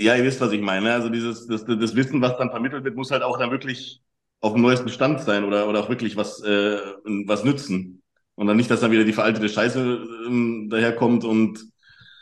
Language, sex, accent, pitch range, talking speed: German, male, German, 110-130 Hz, 215 wpm